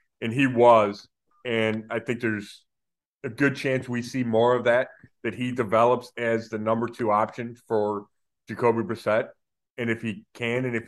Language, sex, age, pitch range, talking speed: English, male, 30-49, 110-130 Hz, 175 wpm